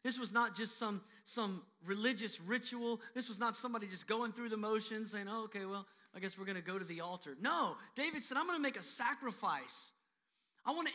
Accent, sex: American, male